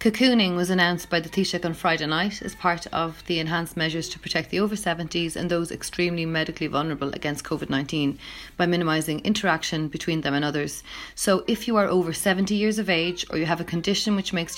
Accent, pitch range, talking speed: Irish, 160-180 Hz, 205 wpm